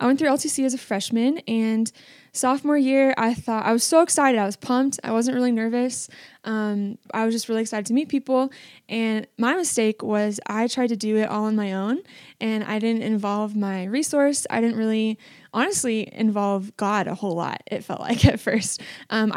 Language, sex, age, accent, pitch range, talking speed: English, female, 20-39, American, 210-245 Hz, 205 wpm